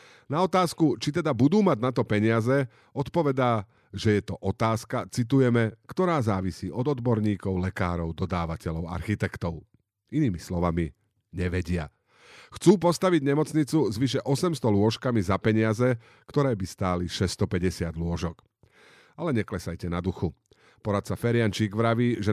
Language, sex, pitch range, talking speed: Slovak, male, 100-130 Hz, 125 wpm